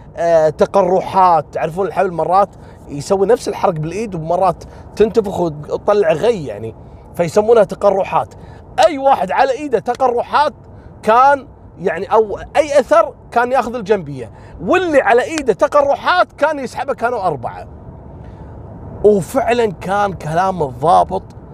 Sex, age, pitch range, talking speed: male, 30-49, 140-205 Hz, 115 wpm